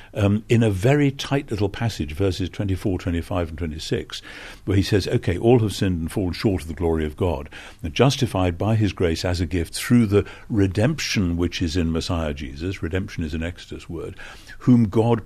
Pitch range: 90-110 Hz